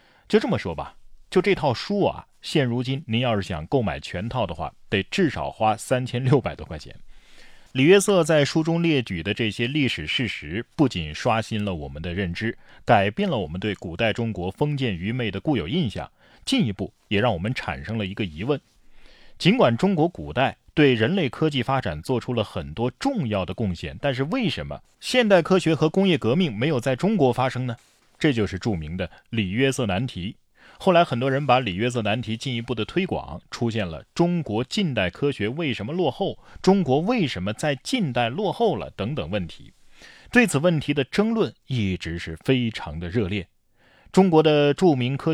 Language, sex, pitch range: Chinese, male, 105-155 Hz